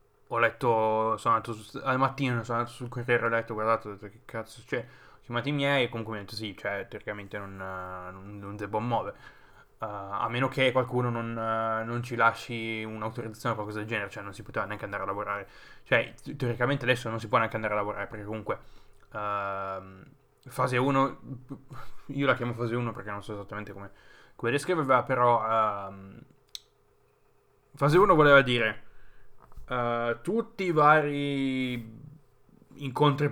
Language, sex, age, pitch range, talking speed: Italian, male, 10-29, 110-135 Hz, 170 wpm